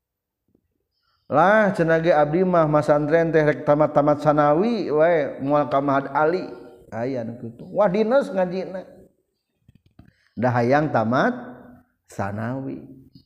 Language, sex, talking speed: Indonesian, male, 100 wpm